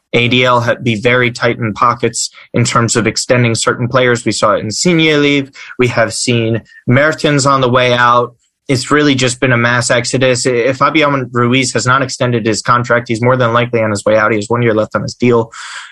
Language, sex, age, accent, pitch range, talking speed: English, male, 20-39, American, 115-140 Hz, 215 wpm